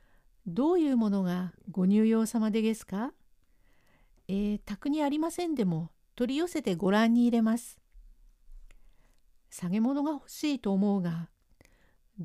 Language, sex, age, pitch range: Japanese, female, 50-69, 190-255 Hz